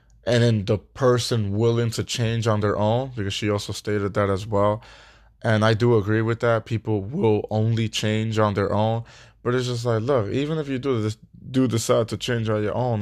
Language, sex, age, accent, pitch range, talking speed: English, male, 20-39, American, 105-125 Hz, 215 wpm